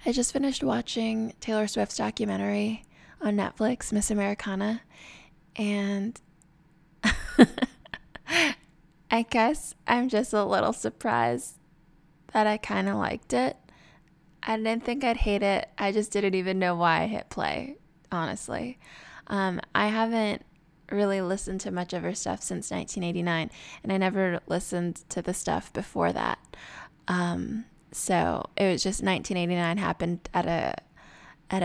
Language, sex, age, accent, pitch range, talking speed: English, female, 20-39, American, 175-230 Hz, 135 wpm